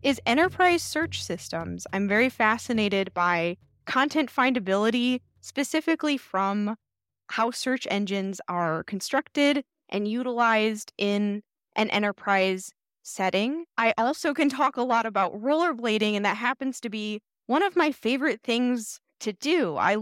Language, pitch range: English, 195-245 Hz